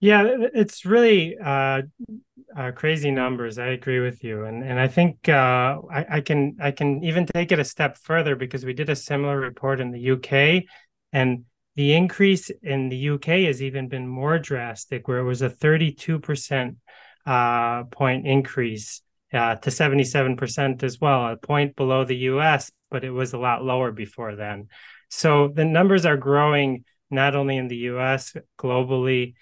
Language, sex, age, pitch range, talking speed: English, male, 30-49, 125-155 Hz, 175 wpm